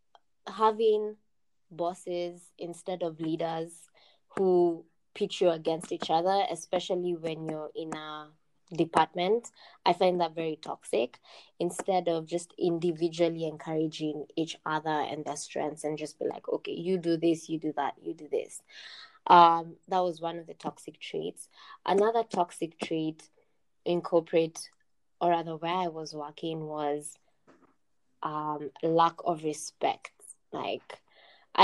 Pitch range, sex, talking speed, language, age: 160-180 Hz, female, 135 wpm, English, 20-39